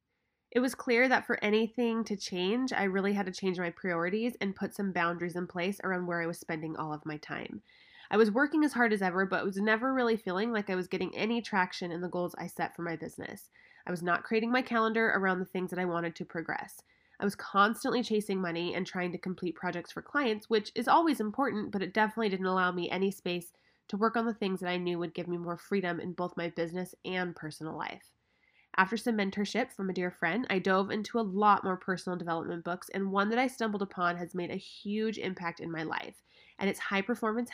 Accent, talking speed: American, 235 wpm